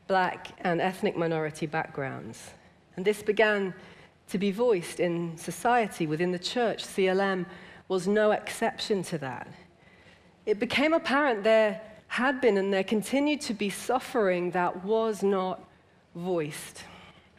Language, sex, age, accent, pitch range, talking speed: English, female, 40-59, British, 175-225 Hz, 130 wpm